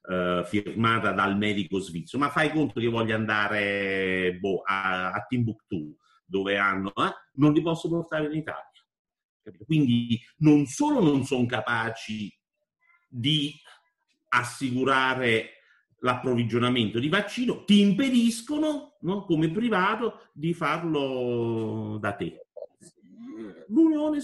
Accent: native